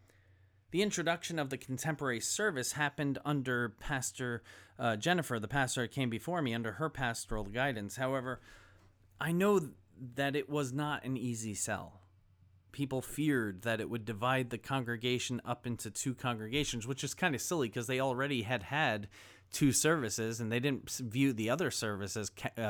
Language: English